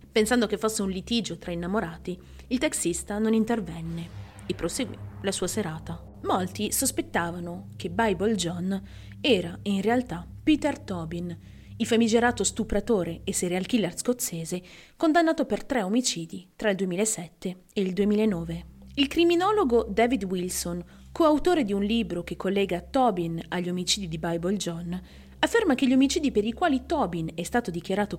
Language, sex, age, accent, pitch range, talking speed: Italian, female, 30-49, native, 175-235 Hz, 150 wpm